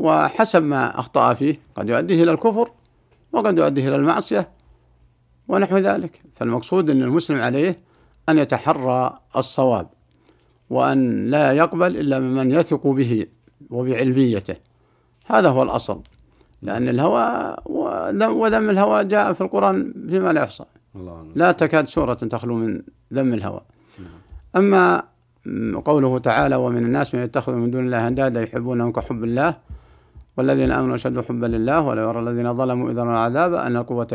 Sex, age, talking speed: male, 60-79, 130 wpm